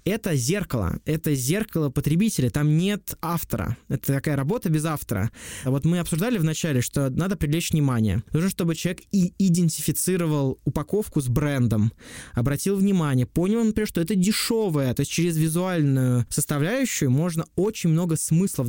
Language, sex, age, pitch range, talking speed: Russian, male, 20-39, 140-175 Hz, 145 wpm